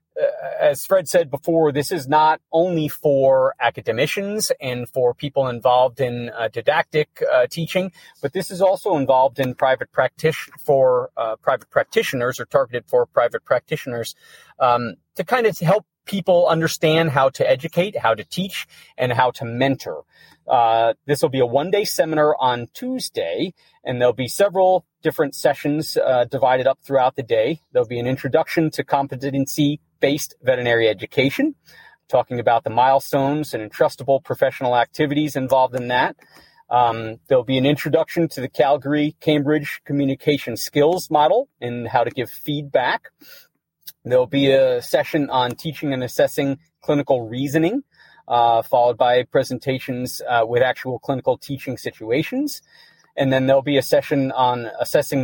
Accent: American